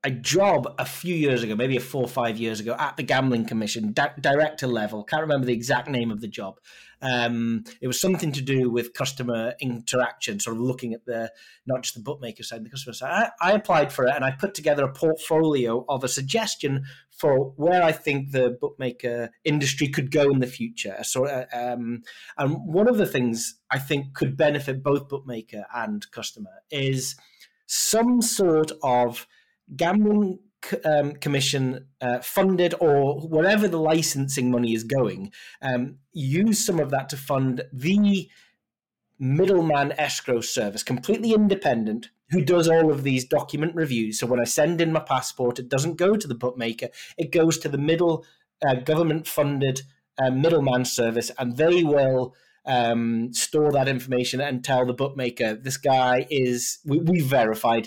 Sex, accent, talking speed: male, British, 175 wpm